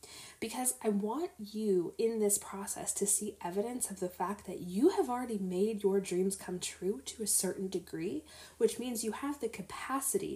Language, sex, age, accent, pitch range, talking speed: English, female, 20-39, American, 175-220 Hz, 185 wpm